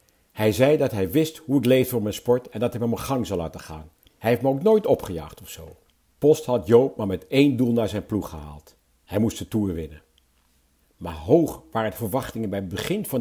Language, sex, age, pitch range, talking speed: Dutch, male, 50-69, 100-150 Hz, 240 wpm